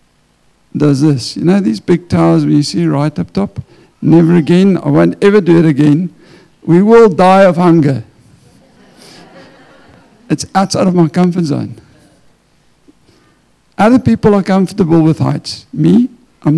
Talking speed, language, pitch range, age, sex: 145 wpm, English, 150-190 Hz, 60-79, male